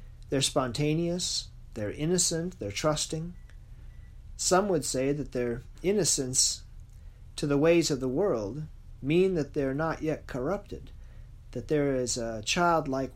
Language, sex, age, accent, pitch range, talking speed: English, male, 40-59, American, 115-160 Hz, 130 wpm